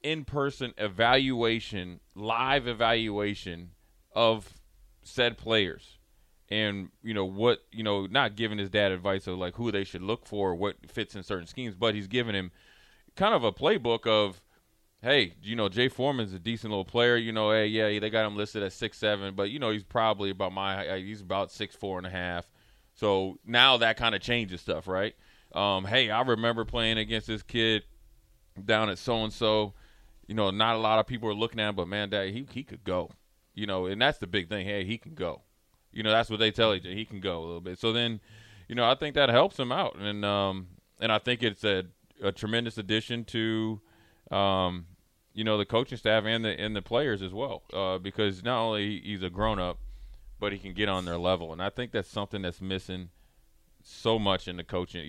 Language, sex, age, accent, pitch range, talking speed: English, male, 30-49, American, 95-115 Hz, 215 wpm